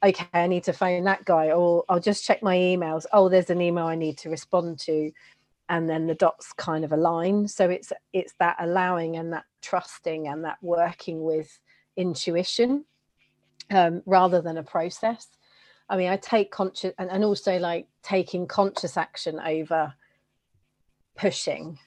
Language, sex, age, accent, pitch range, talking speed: English, female, 40-59, British, 160-185 Hz, 165 wpm